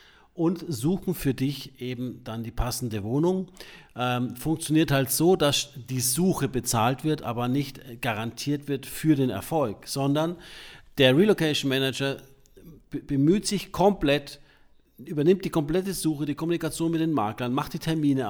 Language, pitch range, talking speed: German, 125-160 Hz, 145 wpm